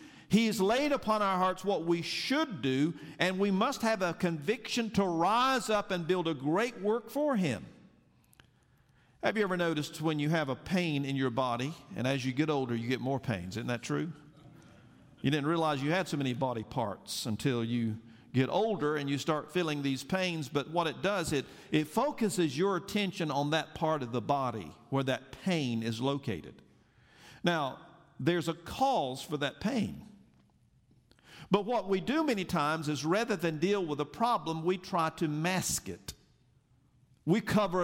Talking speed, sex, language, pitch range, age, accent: 185 wpm, male, English, 135-190 Hz, 50-69, American